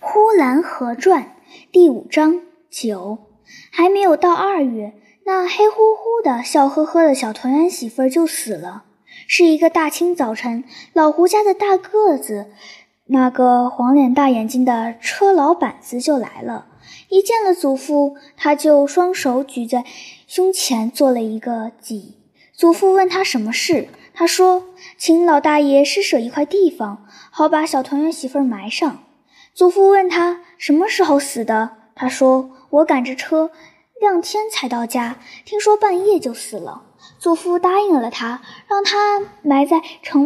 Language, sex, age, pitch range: Chinese, male, 10-29, 255-360 Hz